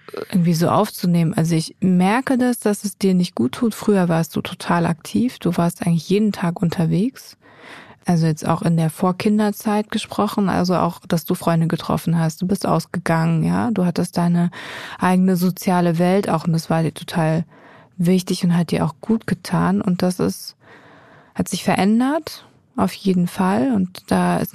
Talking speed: 180 wpm